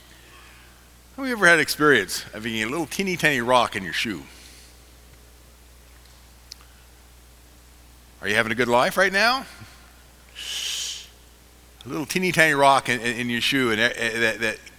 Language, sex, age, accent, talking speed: English, male, 50-69, American, 130 wpm